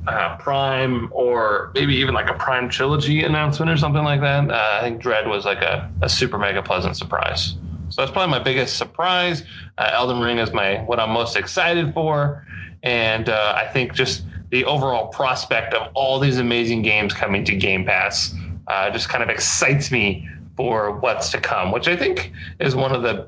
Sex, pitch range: male, 105-140 Hz